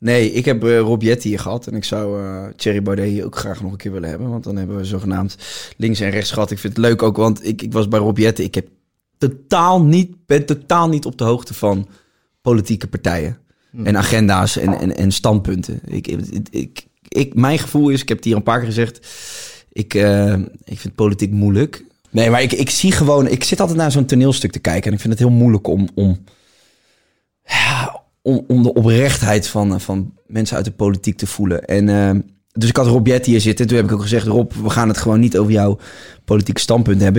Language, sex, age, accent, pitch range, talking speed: Dutch, male, 20-39, Dutch, 100-120 Hz, 225 wpm